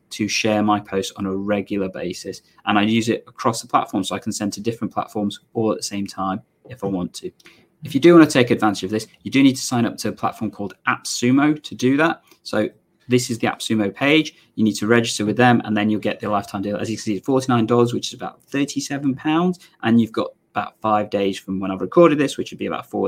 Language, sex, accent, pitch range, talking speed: English, male, British, 105-125 Hz, 255 wpm